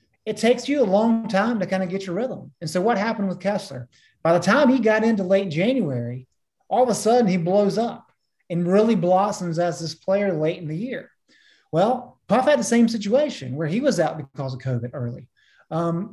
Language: English